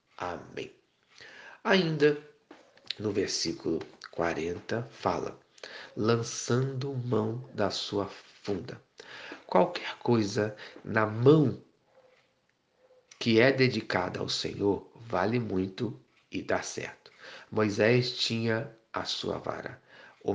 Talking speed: 90 wpm